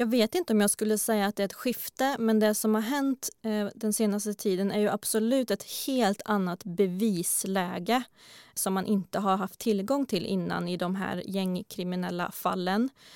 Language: Swedish